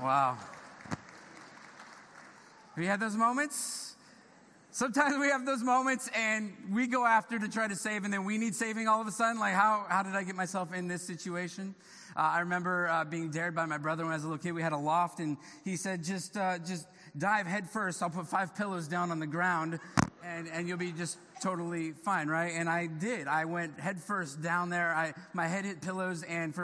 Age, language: 30-49, English